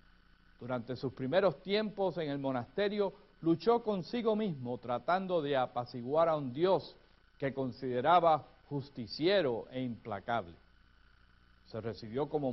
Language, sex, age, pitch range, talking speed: Spanish, male, 60-79, 120-180 Hz, 115 wpm